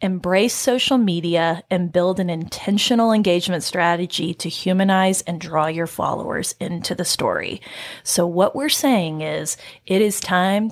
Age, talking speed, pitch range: 30-49, 145 wpm, 180-225 Hz